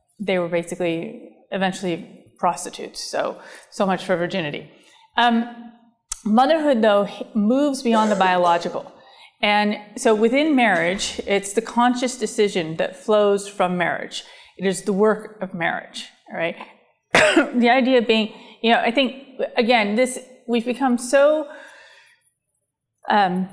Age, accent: 30-49, American